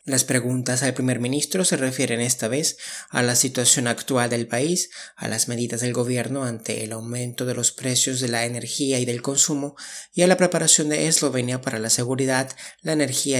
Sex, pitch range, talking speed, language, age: male, 120-140 Hz, 195 wpm, Spanish, 30-49